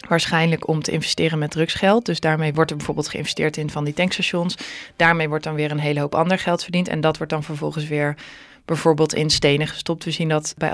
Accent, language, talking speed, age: Dutch, Dutch, 225 wpm, 20-39